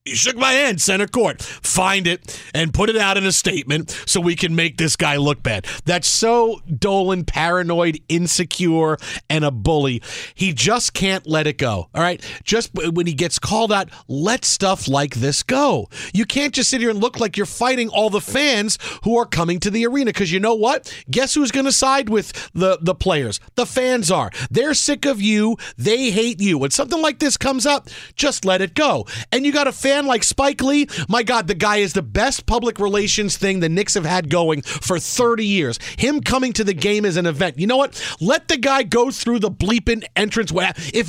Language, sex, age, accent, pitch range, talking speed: English, male, 40-59, American, 175-240 Hz, 215 wpm